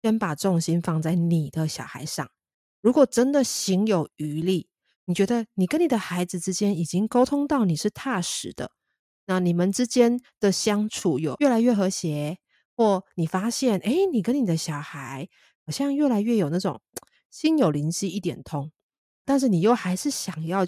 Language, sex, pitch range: Chinese, female, 160-210 Hz